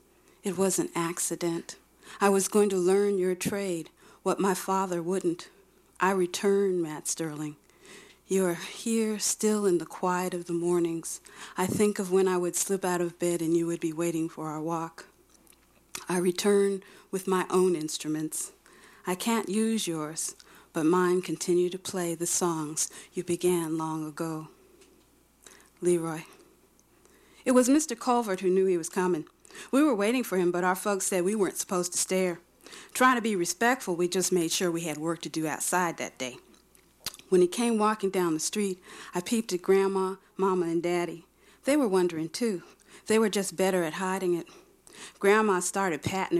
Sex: female